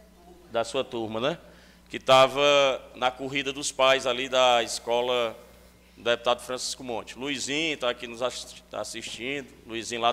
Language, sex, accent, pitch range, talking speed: Portuguese, male, Brazilian, 105-160 Hz, 140 wpm